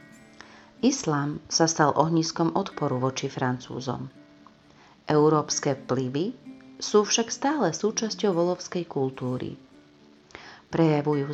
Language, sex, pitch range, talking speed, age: Slovak, female, 140-180 Hz, 85 wpm, 40-59